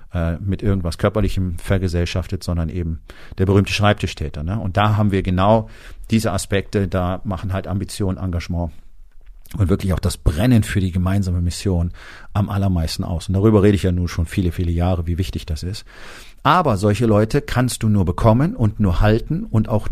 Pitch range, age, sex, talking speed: 90-115 Hz, 40-59, male, 180 wpm